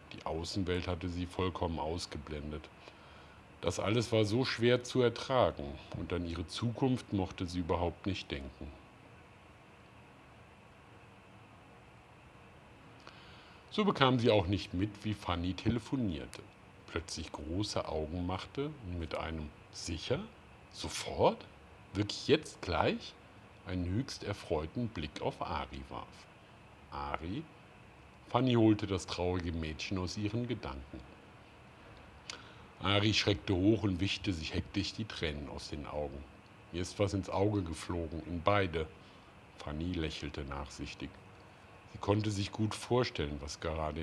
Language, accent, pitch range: Greek, German, 80-105 Hz